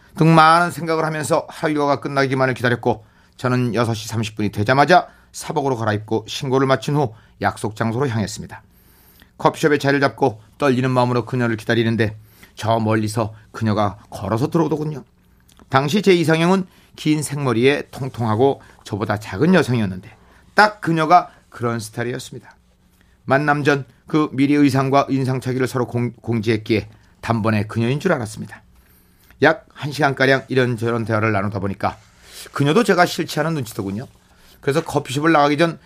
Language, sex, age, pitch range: Korean, male, 40-59, 110-150 Hz